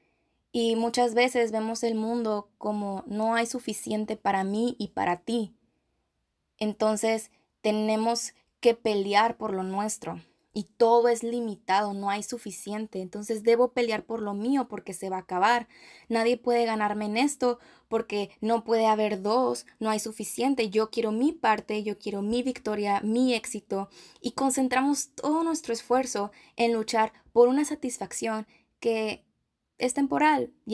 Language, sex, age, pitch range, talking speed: Spanish, female, 20-39, 210-240 Hz, 150 wpm